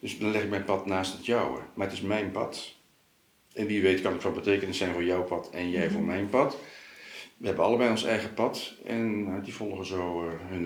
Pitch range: 95-125 Hz